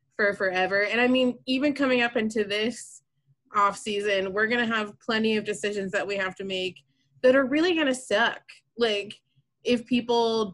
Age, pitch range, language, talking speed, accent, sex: 20-39, 185-225 Hz, English, 170 wpm, American, female